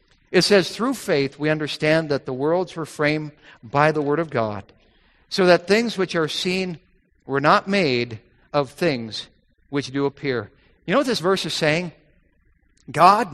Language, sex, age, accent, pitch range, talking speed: English, male, 50-69, American, 150-200 Hz, 170 wpm